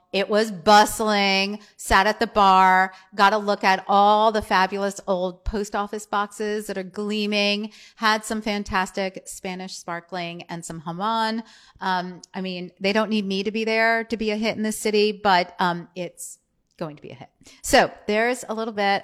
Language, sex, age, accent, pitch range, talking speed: English, female, 40-59, American, 180-215 Hz, 185 wpm